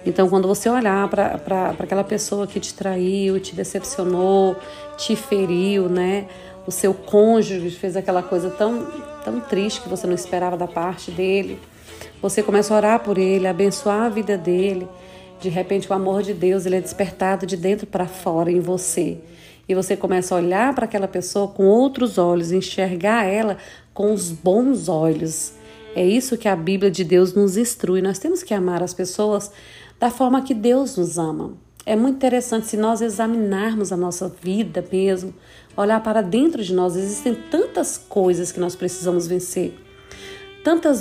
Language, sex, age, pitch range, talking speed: Portuguese, female, 40-59, 185-225 Hz, 170 wpm